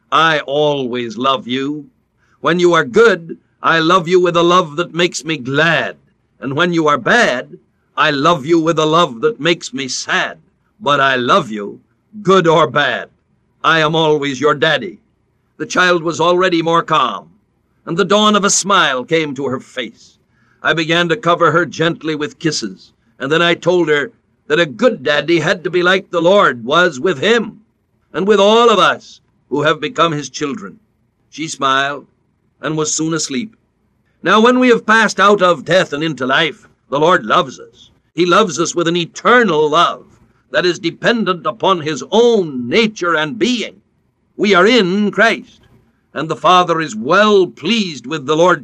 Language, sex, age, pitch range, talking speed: English, male, 60-79, 155-195 Hz, 180 wpm